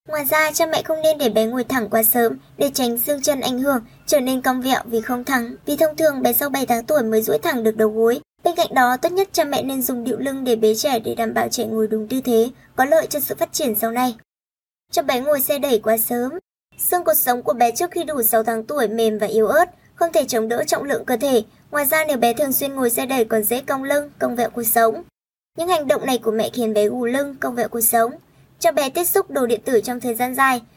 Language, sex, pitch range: Vietnamese, male, 230-300 Hz